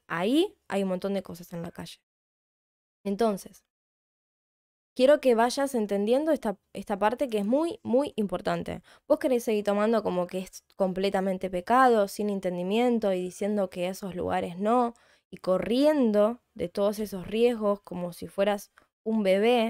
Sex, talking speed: female, 150 wpm